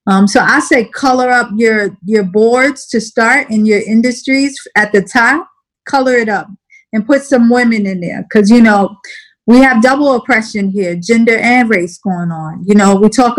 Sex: female